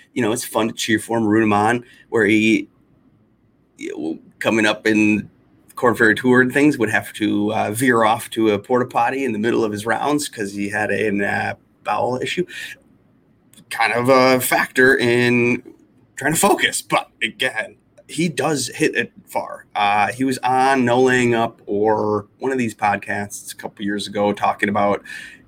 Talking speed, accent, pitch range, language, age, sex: 190 wpm, American, 105-130 Hz, English, 30-49, male